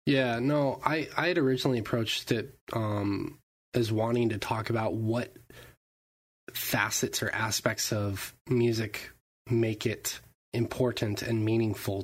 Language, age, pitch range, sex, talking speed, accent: English, 20-39, 100-125 Hz, male, 125 wpm, American